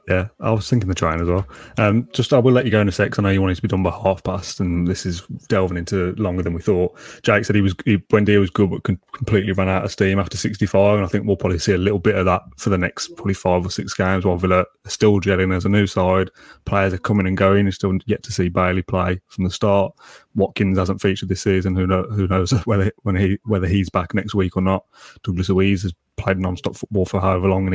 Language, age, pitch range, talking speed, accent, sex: English, 20-39, 95-110 Hz, 275 wpm, British, male